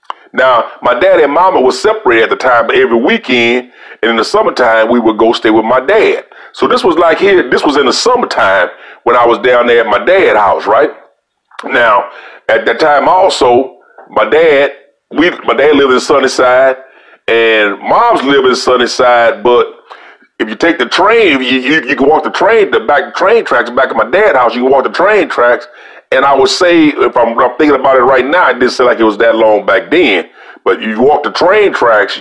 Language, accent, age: English, American, 40-59